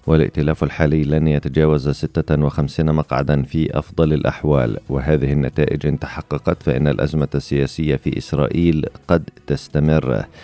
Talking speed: 115 wpm